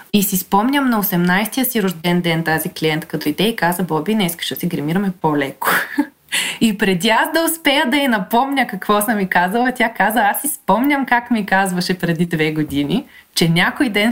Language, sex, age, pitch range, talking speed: Bulgarian, female, 20-39, 175-240 Hz, 210 wpm